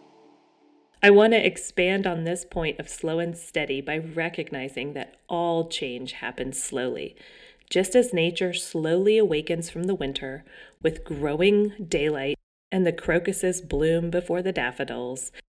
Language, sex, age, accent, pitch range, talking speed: English, female, 30-49, American, 160-200 Hz, 140 wpm